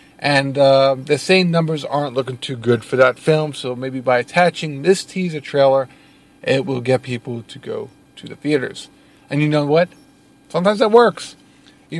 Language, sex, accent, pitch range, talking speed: English, male, American, 130-175 Hz, 180 wpm